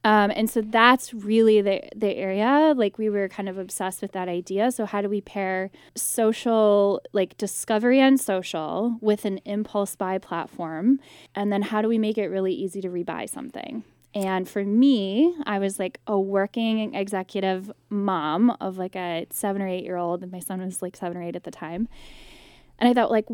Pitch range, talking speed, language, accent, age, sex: 185-225 Hz, 200 wpm, English, American, 10-29, female